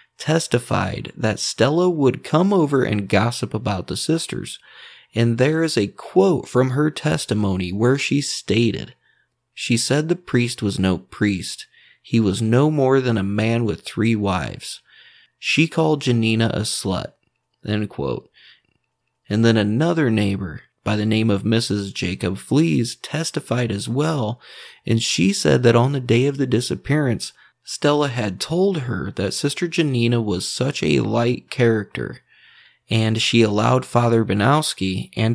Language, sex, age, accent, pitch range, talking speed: English, male, 30-49, American, 105-135 Hz, 145 wpm